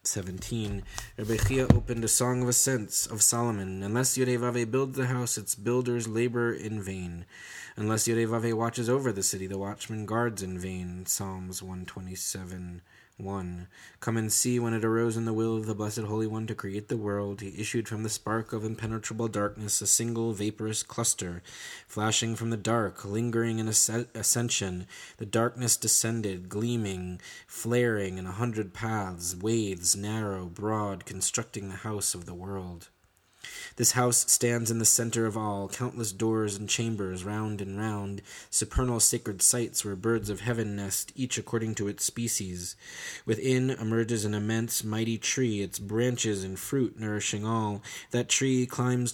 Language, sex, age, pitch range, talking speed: English, male, 20-39, 100-120 Hz, 165 wpm